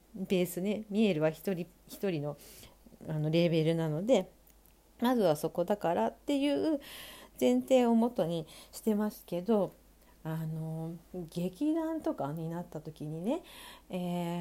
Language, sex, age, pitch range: Japanese, female, 40-59, 175-270 Hz